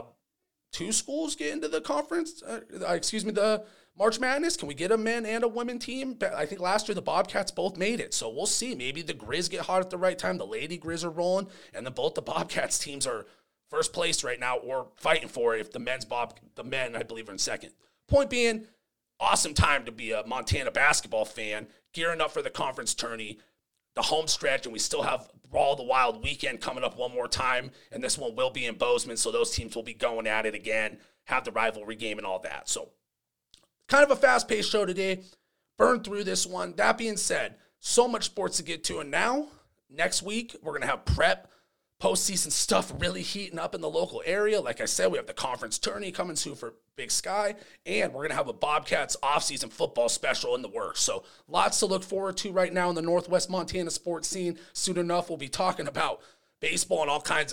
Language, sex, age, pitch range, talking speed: English, male, 30-49, 165-245 Hz, 225 wpm